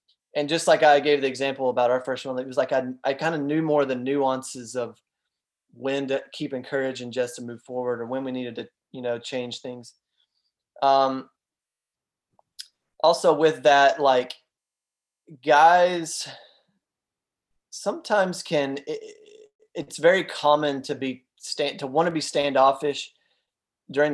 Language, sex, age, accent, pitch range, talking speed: English, male, 20-39, American, 130-160 Hz, 155 wpm